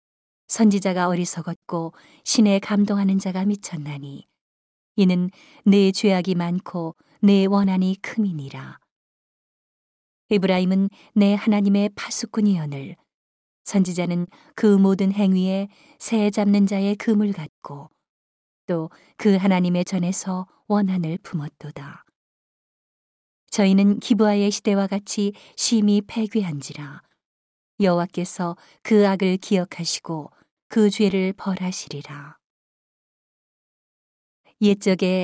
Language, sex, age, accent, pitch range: Korean, female, 40-59, native, 175-205 Hz